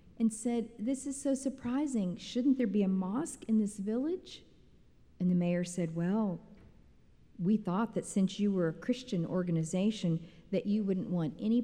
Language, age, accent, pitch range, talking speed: English, 50-69, American, 155-210 Hz, 170 wpm